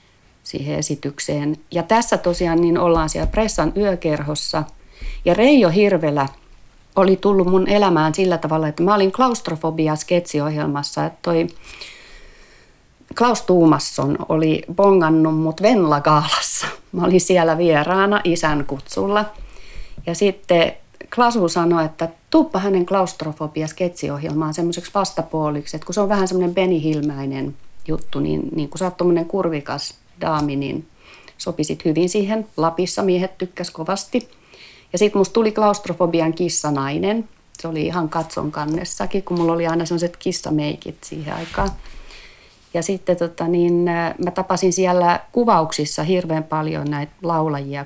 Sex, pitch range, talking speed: female, 155-185 Hz, 125 wpm